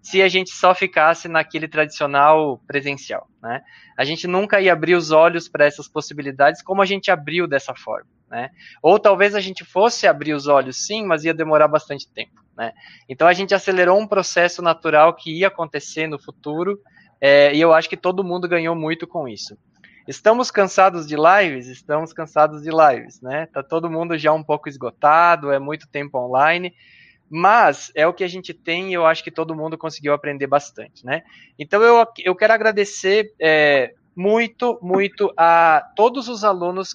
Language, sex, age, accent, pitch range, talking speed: Portuguese, male, 20-39, Brazilian, 150-185 Hz, 180 wpm